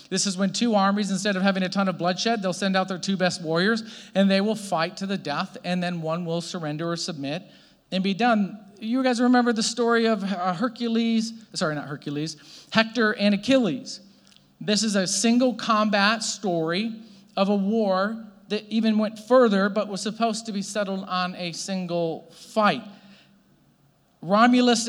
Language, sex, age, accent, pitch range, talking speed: English, male, 40-59, American, 195-235 Hz, 175 wpm